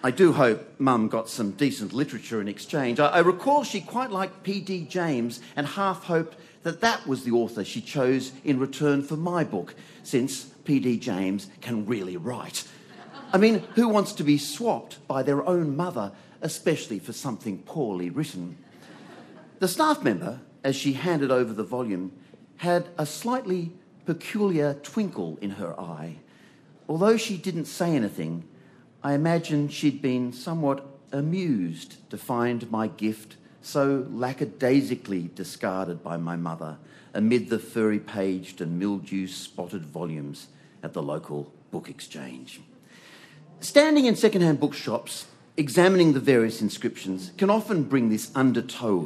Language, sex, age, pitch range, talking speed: English, male, 40-59, 110-175 Hz, 145 wpm